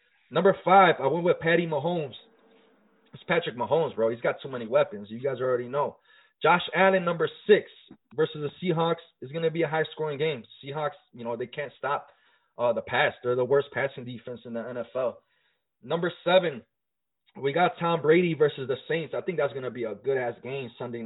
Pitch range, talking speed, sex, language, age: 130-170 Hz, 200 wpm, male, English, 20-39